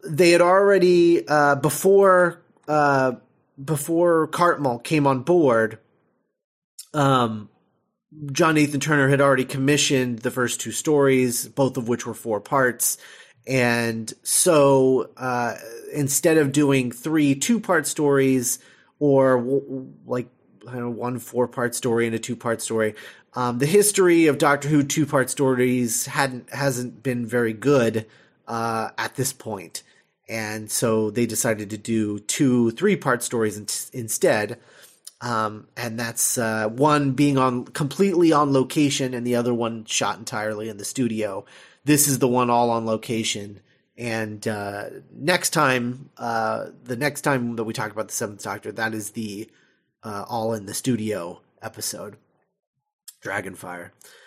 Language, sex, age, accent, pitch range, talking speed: English, male, 30-49, American, 115-150 Hz, 145 wpm